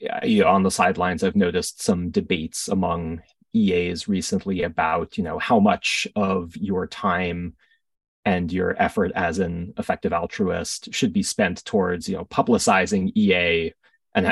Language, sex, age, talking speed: English, male, 30-49, 145 wpm